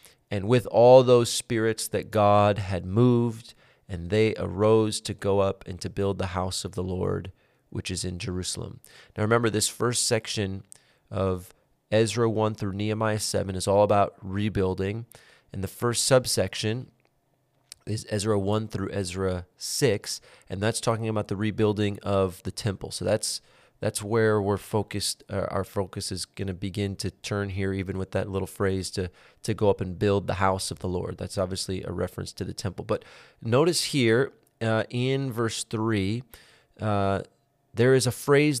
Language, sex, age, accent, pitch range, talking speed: English, male, 30-49, American, 95-120 Hz, 175 wpm